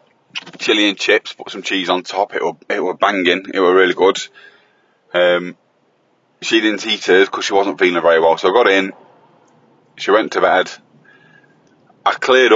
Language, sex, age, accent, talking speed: English, male, 30-49, British, 180 wpm